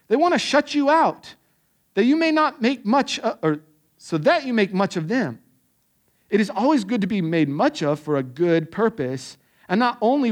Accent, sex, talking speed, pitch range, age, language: American, male, 215 wpm, 185-280 Hz, 50-69, English